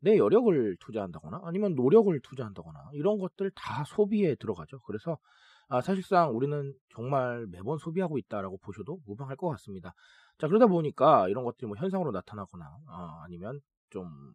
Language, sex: Korean, male